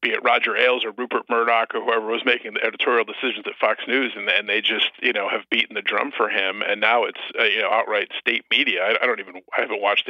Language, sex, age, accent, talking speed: English, male, 40-59, American, 260 wpm